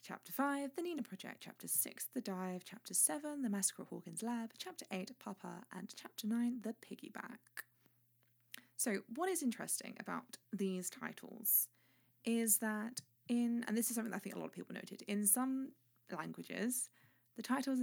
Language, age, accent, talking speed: English, 20-39, British, 170 wpm